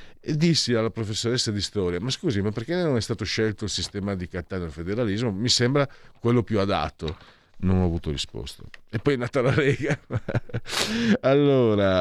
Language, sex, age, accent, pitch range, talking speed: Italian, male, 50-69, native, 80-115 Hz, 175 wpm